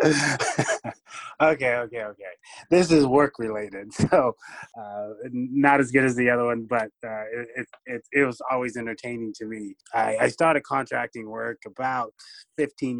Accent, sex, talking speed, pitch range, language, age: American, male, 150 wpm, 105-130 Hz, English, 20-39